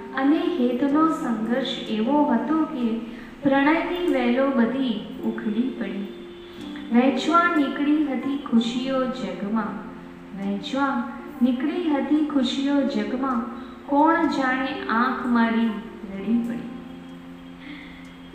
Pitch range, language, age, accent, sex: 220-275 Hz, Gujarati, 20-39, native, female